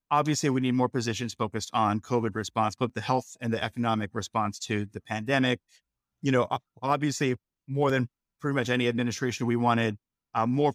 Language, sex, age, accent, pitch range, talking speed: English, male, 30-49, American, 115-135 Hz, 180 wpm